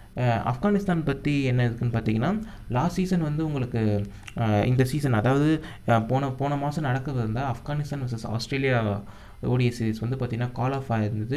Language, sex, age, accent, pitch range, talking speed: Tamil, male, 20-39, native, 115-145 Hz, 145 wpm